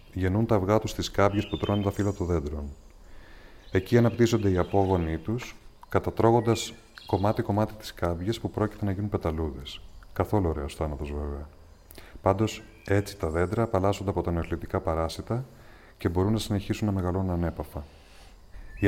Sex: male